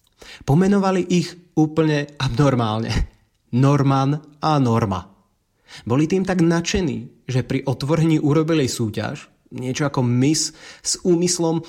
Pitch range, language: 115-150 Hz, Slovak